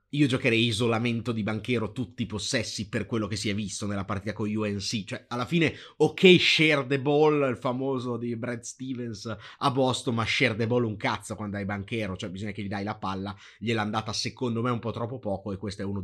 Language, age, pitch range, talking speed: Italian, 30-49, 105-130 Hz, 225 wpm